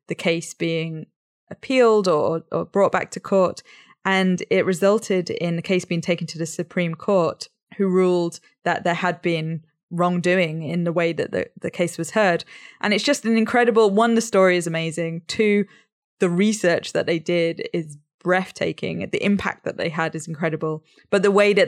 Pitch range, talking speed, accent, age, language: 165-195 Hz, 185 wpm, British, 20-39, English